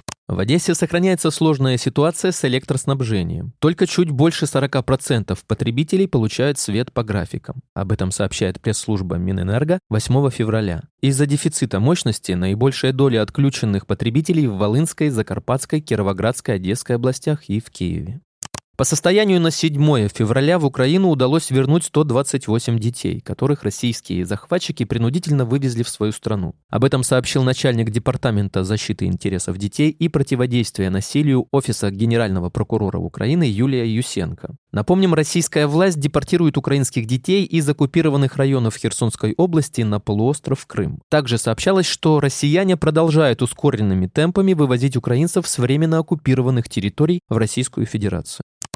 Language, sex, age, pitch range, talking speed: Russian, male, 20-39, 110-155 Hz, 130 wpm